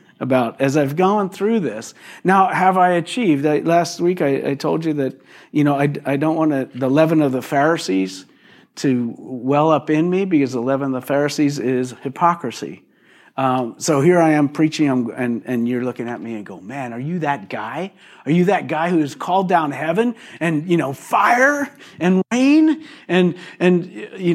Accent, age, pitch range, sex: American, 50-69, 145-185 Hz, male